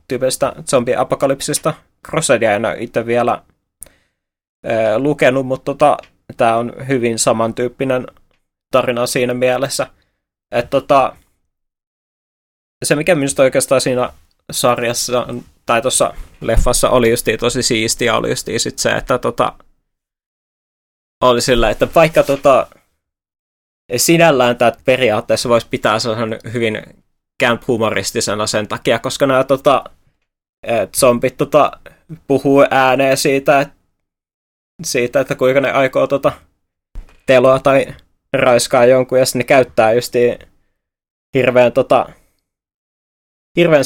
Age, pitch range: 20-39, 110-130 Hz